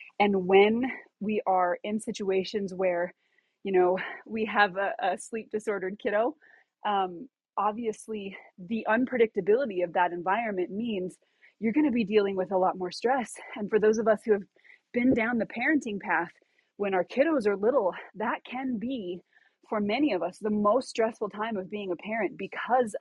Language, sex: English, female